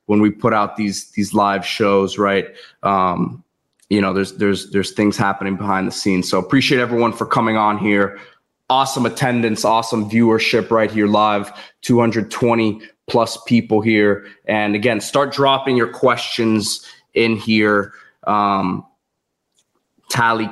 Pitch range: 100-115 Hz